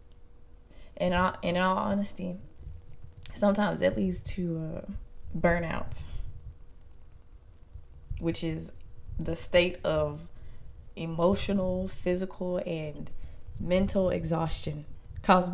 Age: 20-39